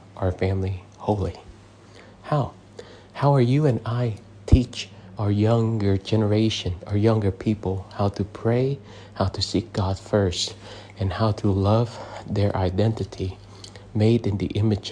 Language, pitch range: English, 95-110 Hz